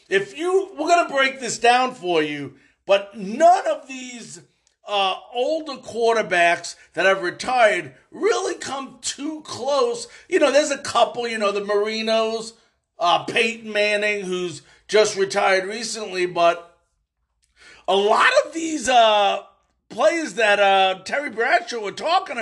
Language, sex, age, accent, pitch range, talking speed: English, male, 50-69, American, 195-275 Hz, 140 wpm